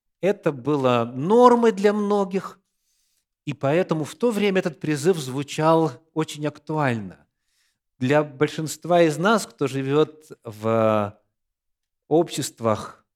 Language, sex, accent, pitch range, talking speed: Russian, male, native, 110-170 Hz, 105 wpm